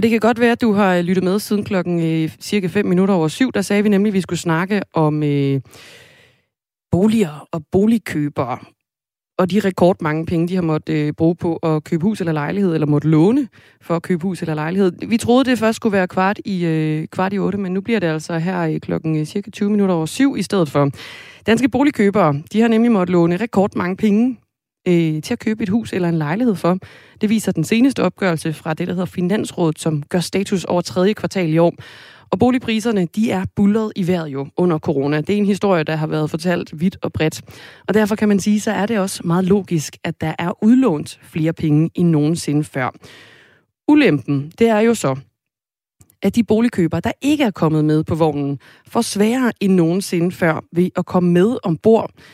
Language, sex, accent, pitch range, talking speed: Danish, female, native, 160-210 Hz, 210 wpm